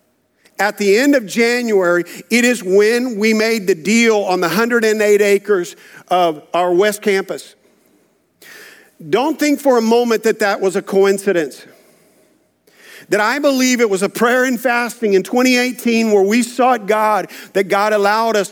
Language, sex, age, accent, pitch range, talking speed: English, male, 50-69, American, 210-245 Hz, 160 wpm